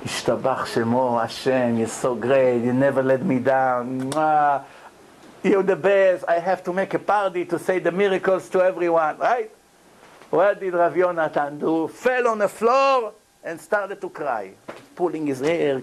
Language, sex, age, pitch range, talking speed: English, male, 60-79, 150-210 Hz, 150 wpm